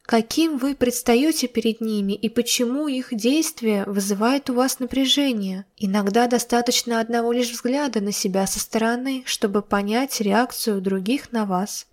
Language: Russian